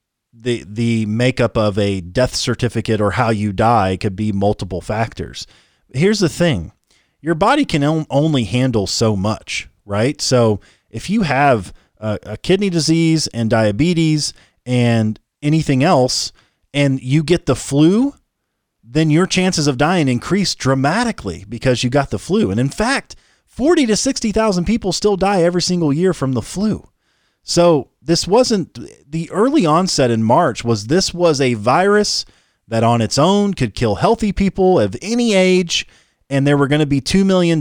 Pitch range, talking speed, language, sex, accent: 115-175 Hz, 165 wpm, English, male, American